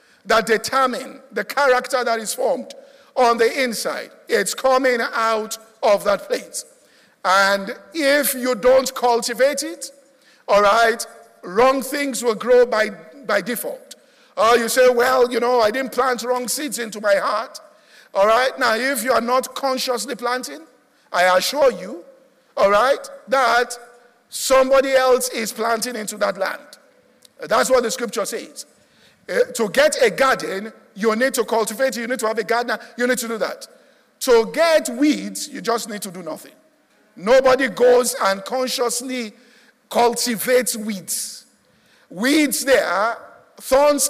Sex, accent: male, Nigerian